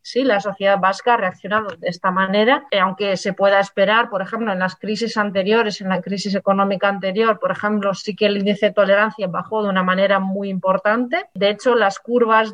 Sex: female